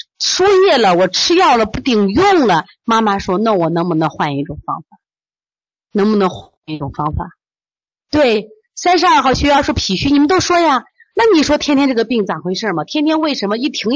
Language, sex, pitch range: Chinese, female, 215-305 Hz